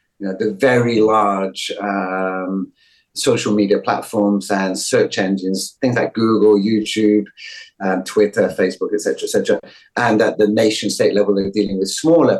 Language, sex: English, male